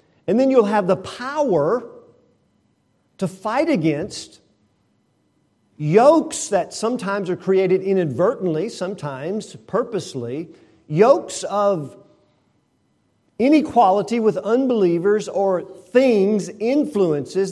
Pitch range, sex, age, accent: 125-190 Hz, male, 50-69, American